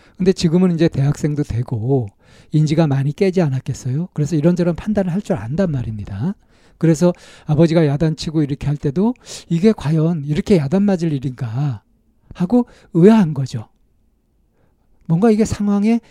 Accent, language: native, Korean